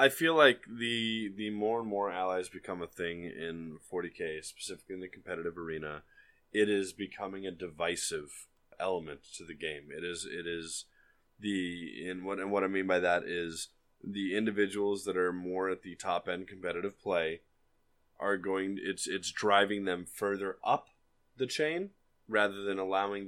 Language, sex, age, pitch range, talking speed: English, male, 20-39, 95-130 Hz, 170 wpm